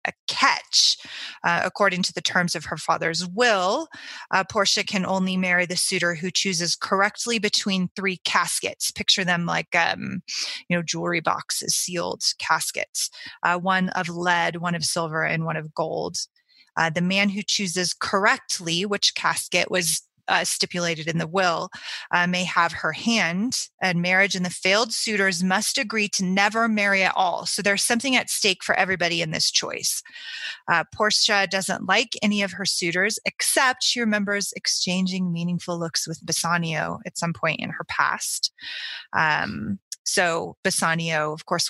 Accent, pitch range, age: American, 175-215 Hz, 20-39